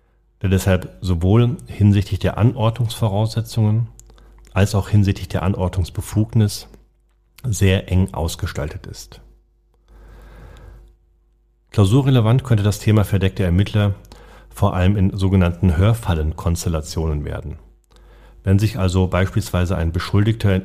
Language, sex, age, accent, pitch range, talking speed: German, male, 40-59, German, 90-110 Hz, 95 wpm